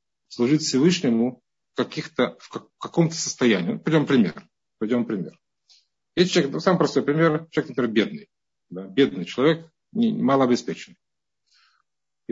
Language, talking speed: Russian, 120 wpm